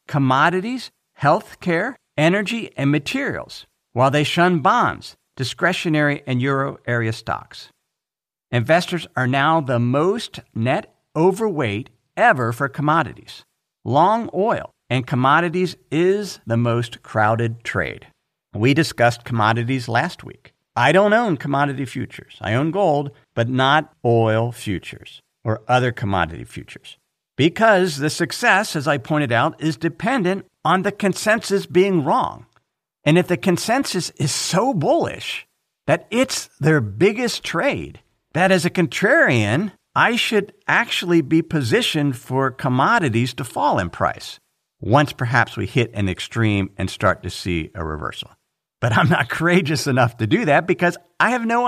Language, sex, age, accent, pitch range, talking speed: English, male, 50-69, American, 120-180 Hz, 140 wpm